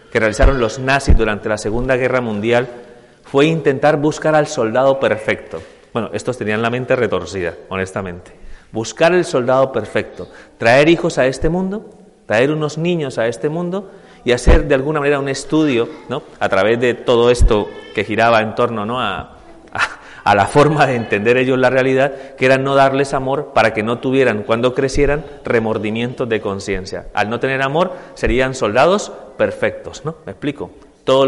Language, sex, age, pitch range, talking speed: Spanish, male, 30-49, 115-155 Hz, 170 wpm